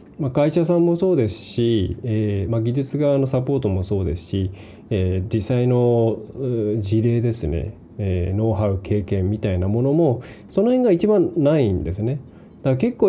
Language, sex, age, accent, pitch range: Japanese, male, 20-39, native, 105-160 Hz